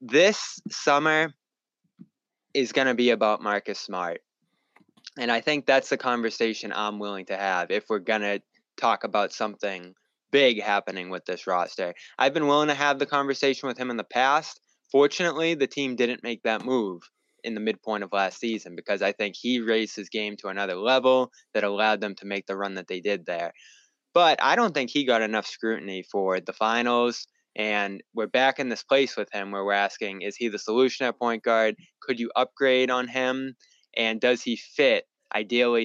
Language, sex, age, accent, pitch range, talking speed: English, male, 20-39, American, 105-130 Hz, 195 wpm